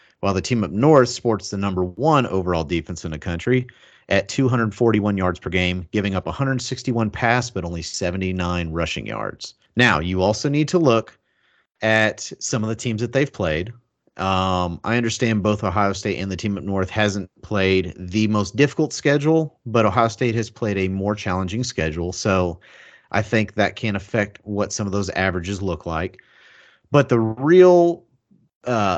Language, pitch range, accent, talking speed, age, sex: English, 95-120 Hz, American, 175 wpm, 40-59, male